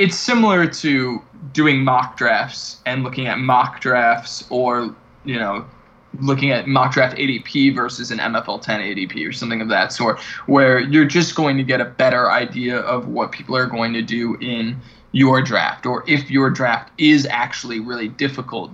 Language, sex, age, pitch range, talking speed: English, male, 20-39, 115-135 Hz, 180 wpm